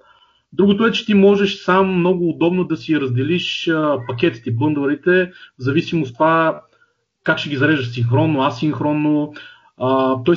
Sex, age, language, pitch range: male, 30-49, Bulgarian, 125-180 Hz